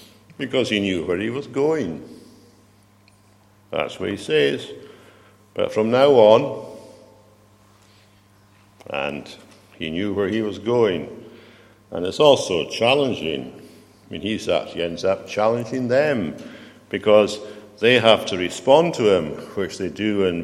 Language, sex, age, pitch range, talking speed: English, male, 60-79, 95-105 Hz, 130 wpm